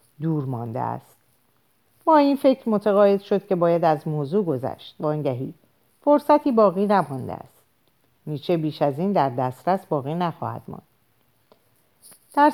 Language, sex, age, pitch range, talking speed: Persian, female, 50-69, 140-200 Hz, 140 wpm